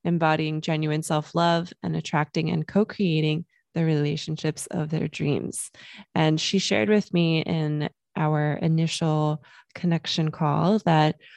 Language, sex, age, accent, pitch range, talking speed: English, female, 20-39, American, 150-175 Hz, 130 wpm